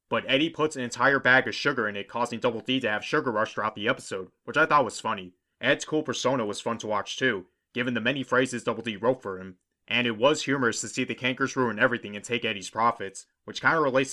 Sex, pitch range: male, 105-130 Hz